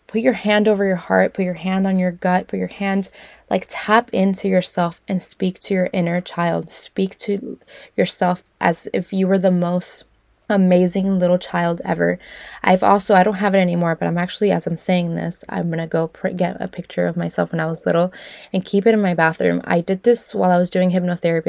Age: 20-39